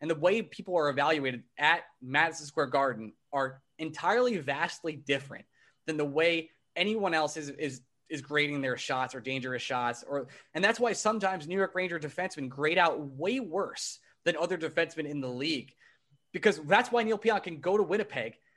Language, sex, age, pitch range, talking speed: English, male, 20-39, 145-195 Hz, 180 wpm